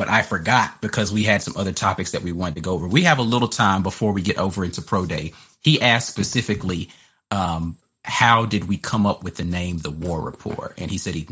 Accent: American